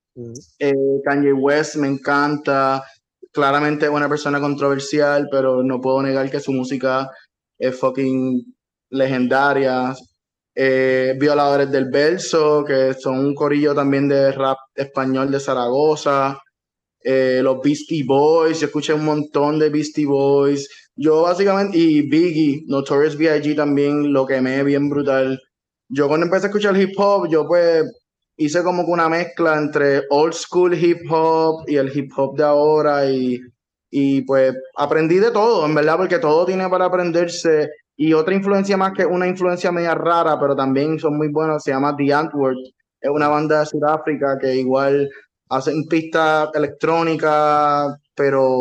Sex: male